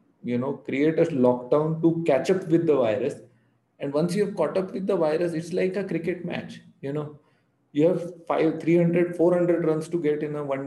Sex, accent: male, Indian